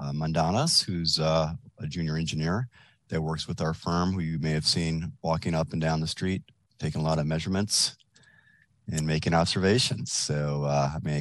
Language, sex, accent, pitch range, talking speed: English, male, American, 85-110 Hz, 195 wpm